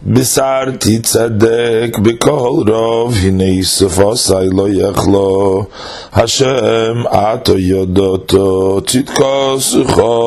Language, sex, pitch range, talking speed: English, male, 95-115 Hz, 80 wpm